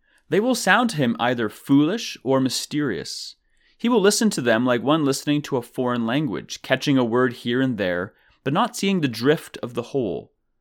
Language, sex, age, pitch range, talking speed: English, male, 30-49, 110-155 Hz, 200 wpm